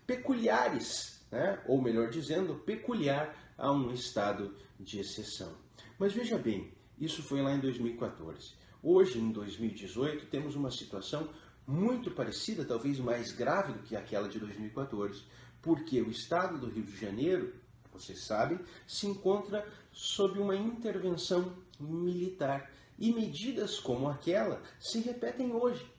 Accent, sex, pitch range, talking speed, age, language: Brazilian, male, 115-180 Hz, 130 wpm, 40-59, Portuguese